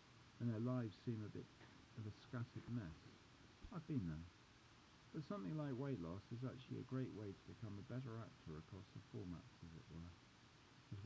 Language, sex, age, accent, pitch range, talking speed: English, male, 50-69, British, 100-125 Hz, 190 wpm